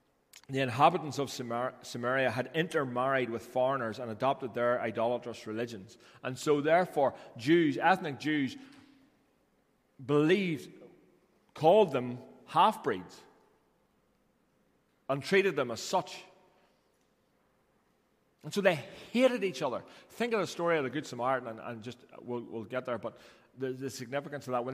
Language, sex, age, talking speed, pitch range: English, male, 40-59, 135 wpm, 115-165 Hz